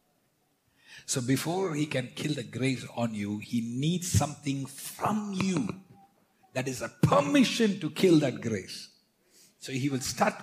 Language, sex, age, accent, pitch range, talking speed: English, male, 60-79, Indian, 110-150 Hz, 150 wpm